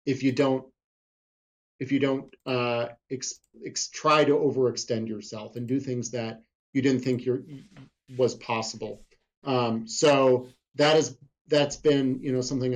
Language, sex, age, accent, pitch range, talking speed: English, male, 40-59, American, 120-145 Hz, 135 wpm